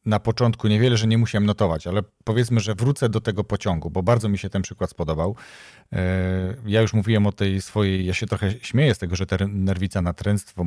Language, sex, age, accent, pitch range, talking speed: Polish, male, 40-59, native, 95-115 Hz, 200 wpm